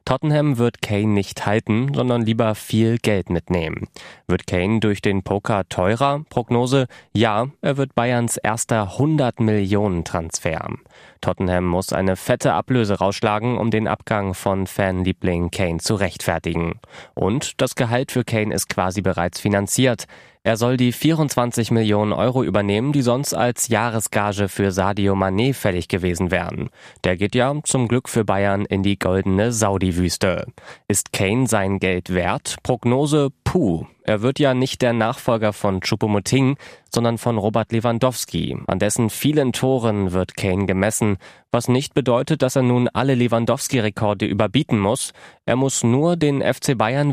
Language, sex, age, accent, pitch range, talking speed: German, male, 20-39, German, 95-125 Hz, 150 wpm